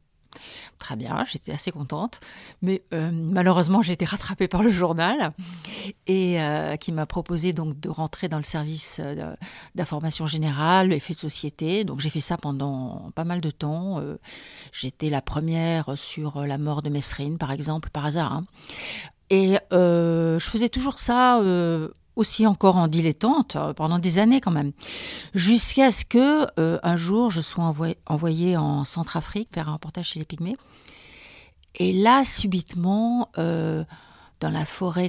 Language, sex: French, female